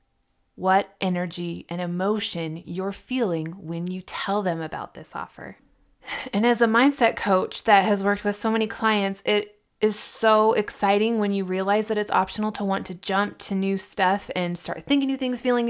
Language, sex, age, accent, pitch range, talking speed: English, female, 20-39, American, 180-215 Hz, 185 wpm